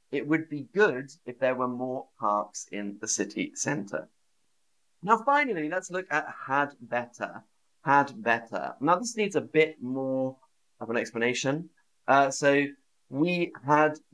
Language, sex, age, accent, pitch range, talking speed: English, male, 30-49, British, 120-160 Hz, 150 wpm